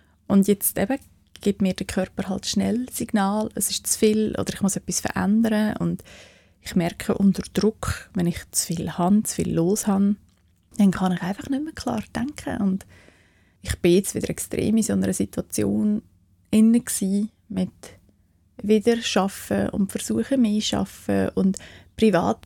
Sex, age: female, 30-49